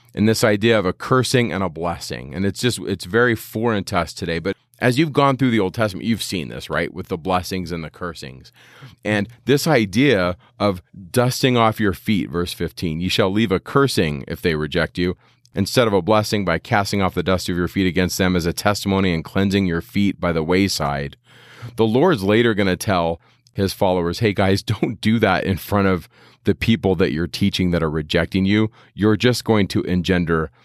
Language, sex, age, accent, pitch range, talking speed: English, male, 30-49, American, 90-115 Hz, 215 wpm